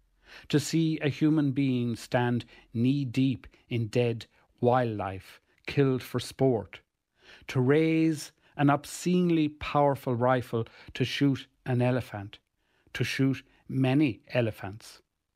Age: 60-79